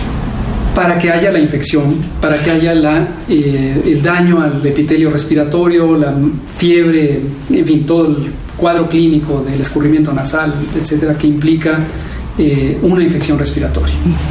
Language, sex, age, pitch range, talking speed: Spanish, male, 40-59, 145-175 Hz, 135 wpm